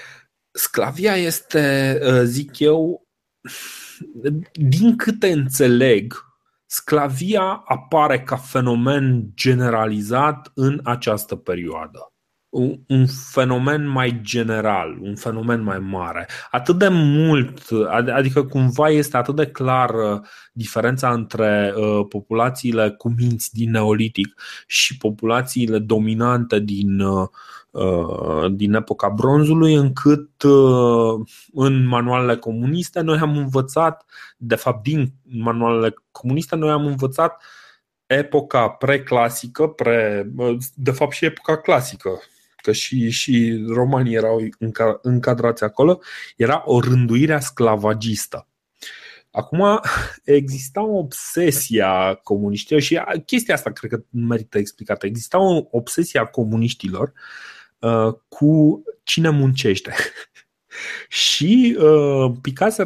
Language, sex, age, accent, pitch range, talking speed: Romanian, male, 30-49, native, 115-150 Hz, 100 wpm